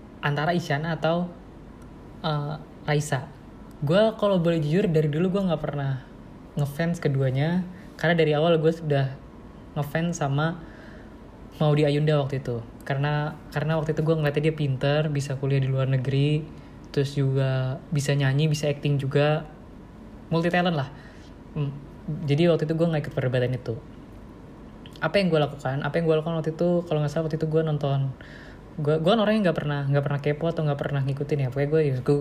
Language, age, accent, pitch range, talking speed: Indonesian, 20-39, native, 140-160 Hz, 165 wpm